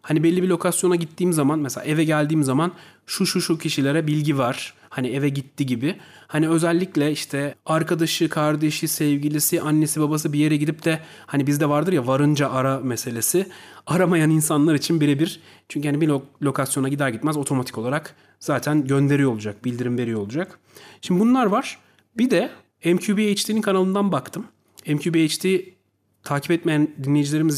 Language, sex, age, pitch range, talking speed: Turkish, male, 40-59, 140-170 Hz, 150 wpm